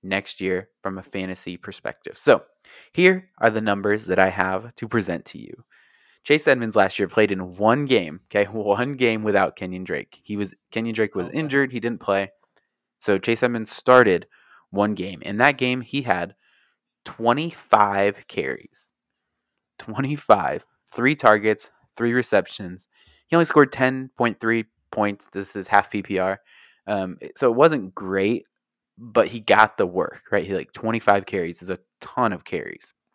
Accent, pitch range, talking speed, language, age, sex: American, 95-125 Hz, 165 wpm, English, 20-39, male